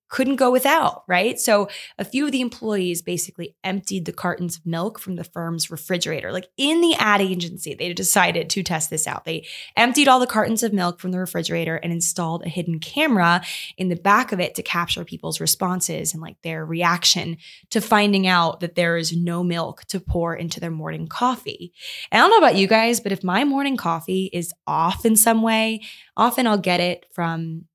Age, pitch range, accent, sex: 20-39, 170-215 Hz, American, female